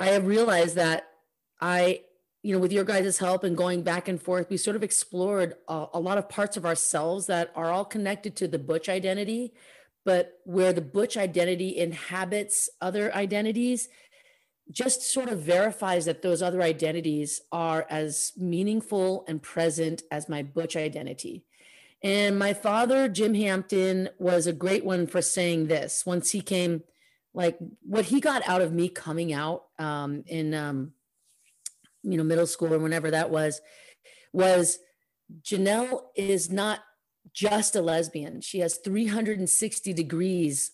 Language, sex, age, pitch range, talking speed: English, female, 30-49, 170-205 Hz, 155 wpm